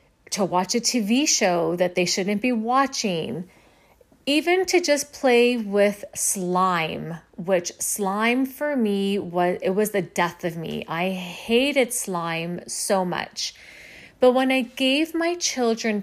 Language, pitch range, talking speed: English, 185-245 Hz, 140 wpm